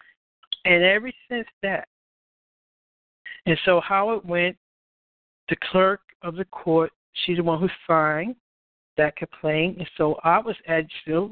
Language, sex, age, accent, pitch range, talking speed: English, male, 60-79, American, 155-195 Hz, 145 wpm